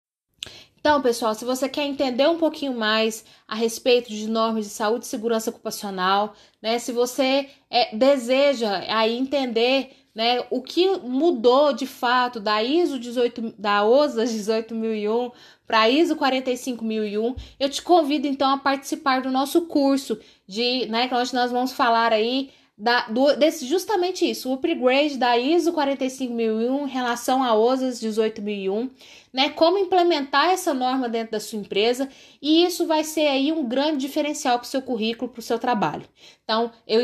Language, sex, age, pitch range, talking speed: Portuguese, female, 20-39, 225-275 Hz, 160 wpm